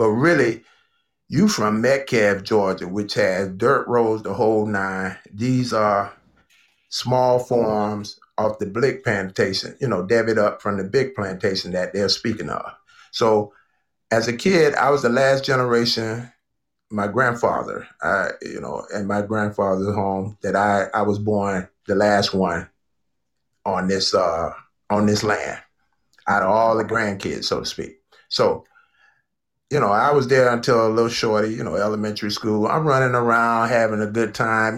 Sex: male